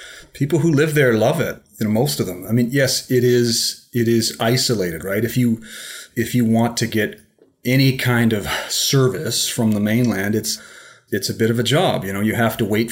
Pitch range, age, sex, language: 105-120 Hz, 30-49, male, English